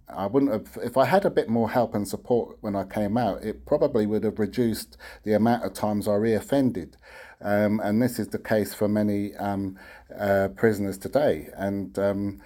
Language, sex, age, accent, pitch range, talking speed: English, male, 50-69, British, 95-110 Hz, 195 wpm